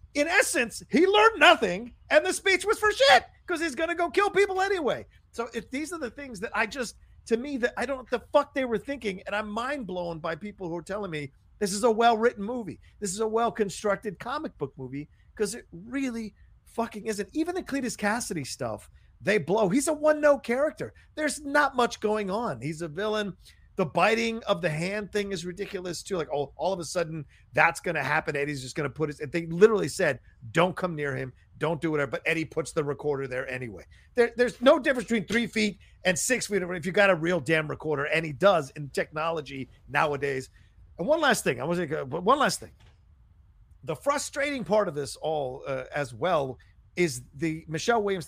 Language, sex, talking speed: English, male, 220 wpm